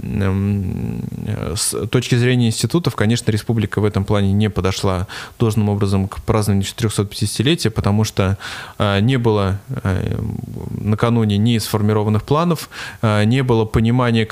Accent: native